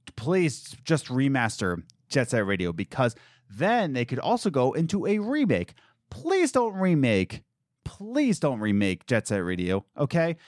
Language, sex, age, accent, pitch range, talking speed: English, male, 30-49, American, 110-170 Hz, 145 wpm